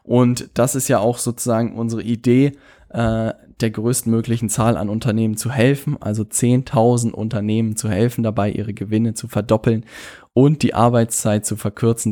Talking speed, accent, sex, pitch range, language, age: 150 wpm, German, male, 110-135 Hz, German, 10-29